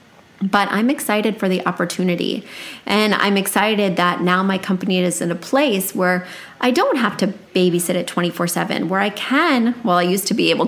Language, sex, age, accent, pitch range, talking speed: English, female, 30-49, American, 190-255 Hz, 190 wpm